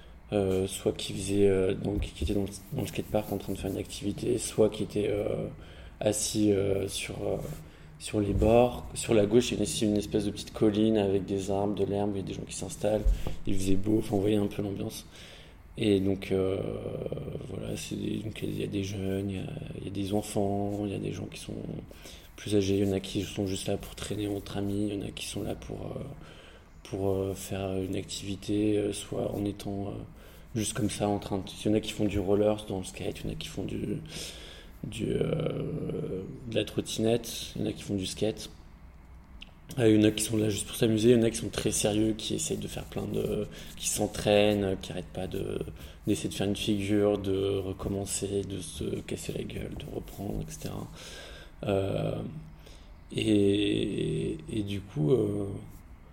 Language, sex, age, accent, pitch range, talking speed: French, male, 20-39, French, 95-105 Hz, 220 wpm